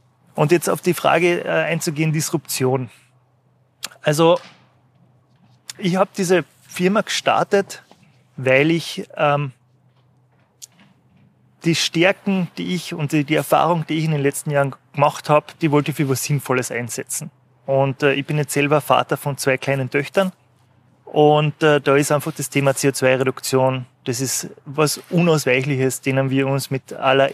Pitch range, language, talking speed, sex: 130-155 Hz, German, 145 wpm, male